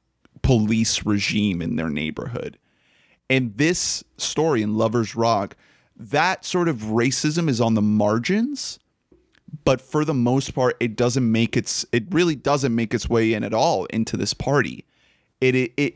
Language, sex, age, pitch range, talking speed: English, male, 30-49, 110-135 Hz, 160 wpm